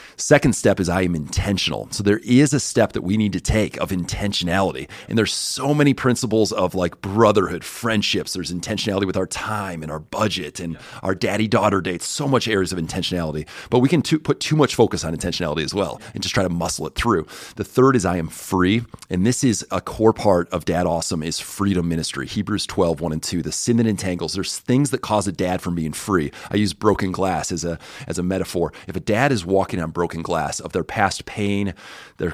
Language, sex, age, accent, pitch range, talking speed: English, male, 30-49, American, 85-110 Hz, 225 wpm